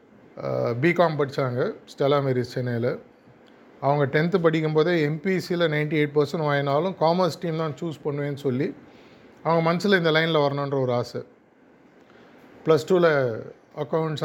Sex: male